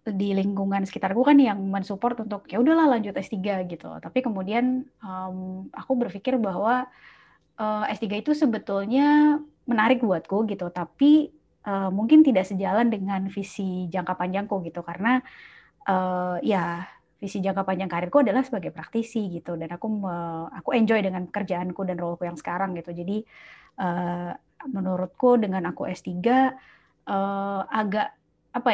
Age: 20-39